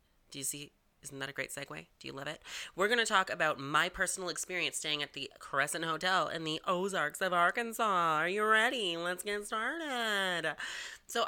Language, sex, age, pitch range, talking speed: English, female, 30-49, 145-185 Hz, 195 wpm